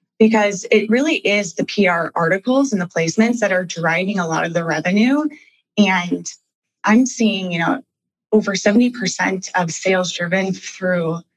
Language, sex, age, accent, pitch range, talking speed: English, female, 20-39, American, 180-235 Hz, 155 wpm